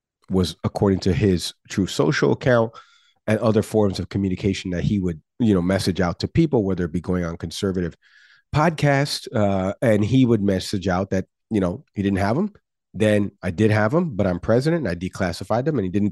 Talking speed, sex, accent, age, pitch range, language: 210 wpm, male, American, 40-59, 95-115 Hz, English